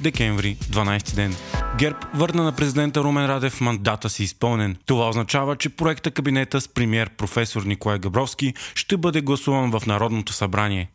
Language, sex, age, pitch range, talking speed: Bulgarian, male, 20-39, 115-145 Hz, 155 wpm